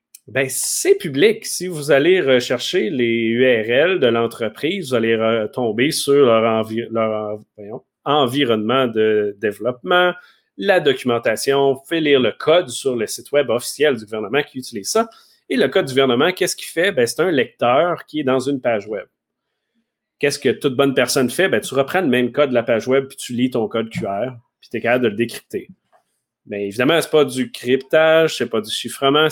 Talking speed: 200 wpm